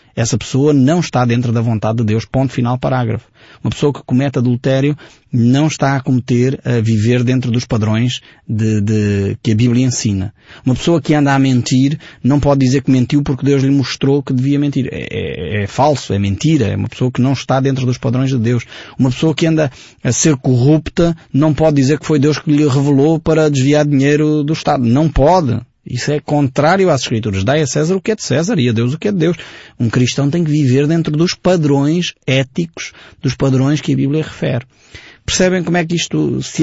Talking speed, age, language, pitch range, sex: 215 wpm, 20-39, Portuguese, 120-150 Hz, male